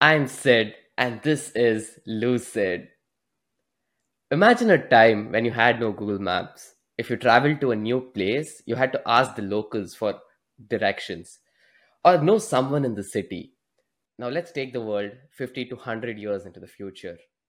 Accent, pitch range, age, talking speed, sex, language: Indian, 110-135 Hz, 10-29, 165 wpm, male, English